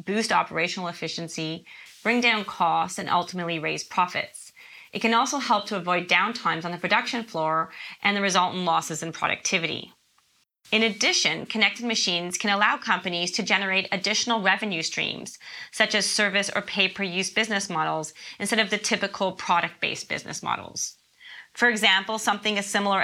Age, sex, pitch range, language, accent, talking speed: 30-49, female, 175-215 Hz, English, American, 160 wpm